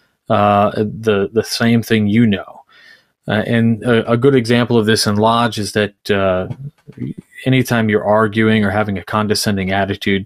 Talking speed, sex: 165 wpm, male